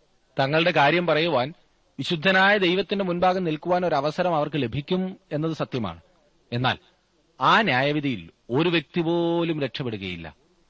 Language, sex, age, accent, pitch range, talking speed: Malayalam, male, 30-49, native, 105-140 Hz, 110 wpm